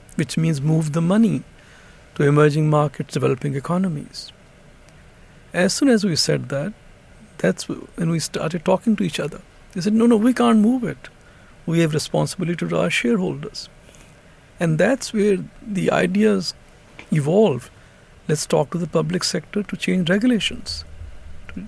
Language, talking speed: English, 150 wpm